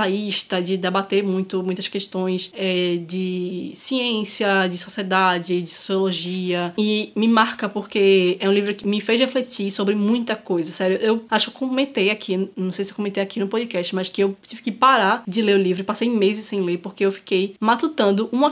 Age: 10-29